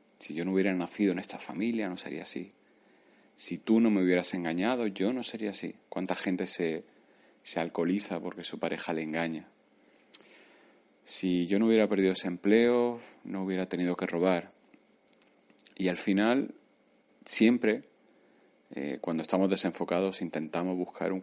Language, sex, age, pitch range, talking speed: Spanish, male, 30-49, 85-100 Hz, 155 wpm